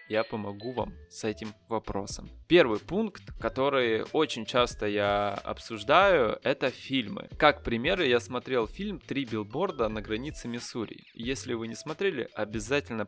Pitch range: 110-145 Hz